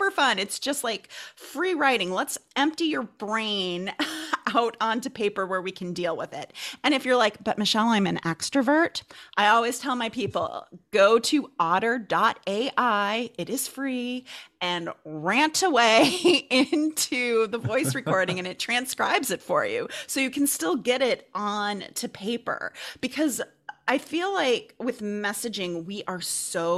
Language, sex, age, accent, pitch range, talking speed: English, female, 30-49, American, 200-275 Hz, 155 wpm